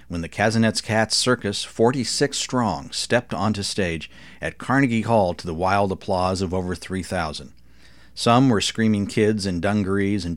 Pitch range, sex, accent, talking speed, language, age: 85-120 Hz, male, American, 155 wpm, English, 50-69